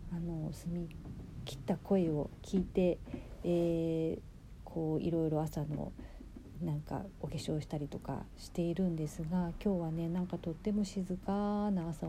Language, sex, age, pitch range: Japanese, female, 40-59, 160-190 Hz